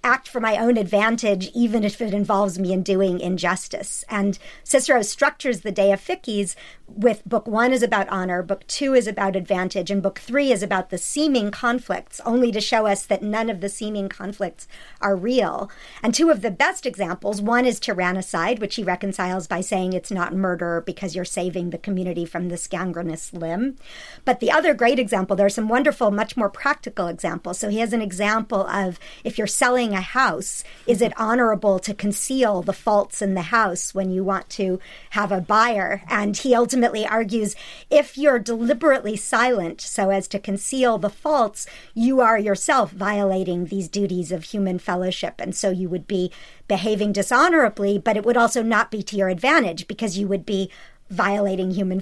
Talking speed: 190 wpm